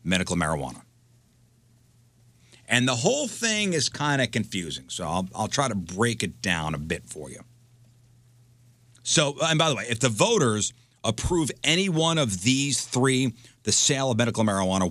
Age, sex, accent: 50-69, male, American